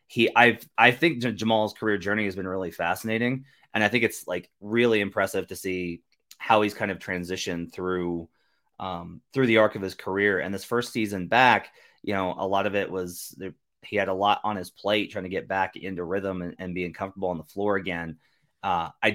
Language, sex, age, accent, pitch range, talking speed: English, male, 30-49, American, 95-110 Hz, 215 wpm